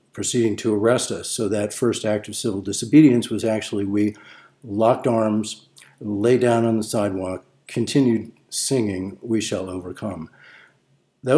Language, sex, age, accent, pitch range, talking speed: English, male, 50-69, American, 105-130 Hz, 140 wpm